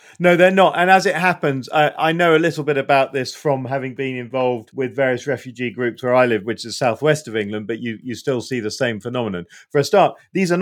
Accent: British